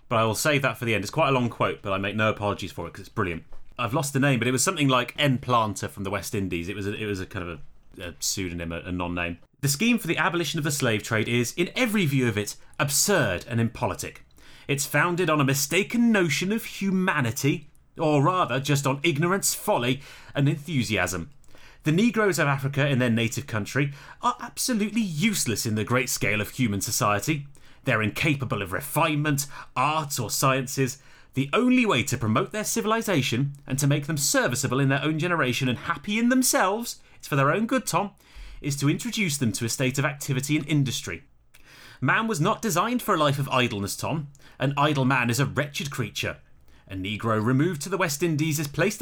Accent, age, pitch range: British, 30-49, 115-165 Hz